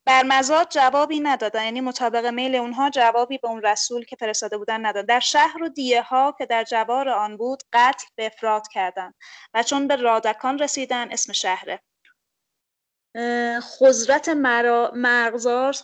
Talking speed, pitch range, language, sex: 140 wpm, 215-265 Hz, English, female